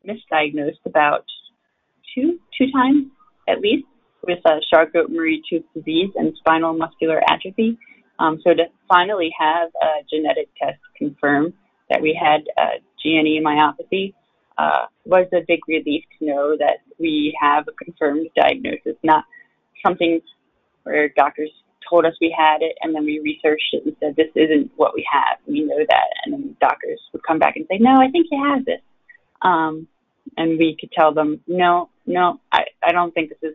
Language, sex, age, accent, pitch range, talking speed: English, female, 20-39, American, 155-190 Hz, 175 wpm